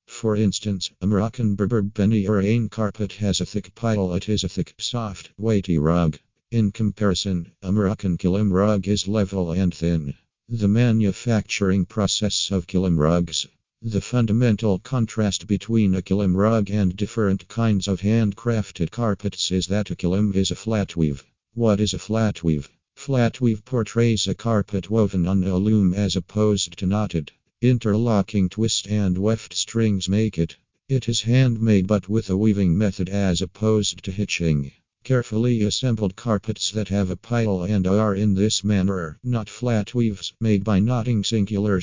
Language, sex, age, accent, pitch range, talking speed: English, male, 50-69, American, 95-110 Hz, 160 wpm